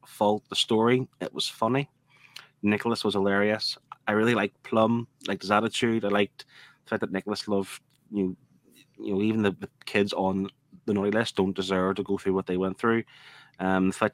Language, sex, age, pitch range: English, male, 20-39, 100-125 Hz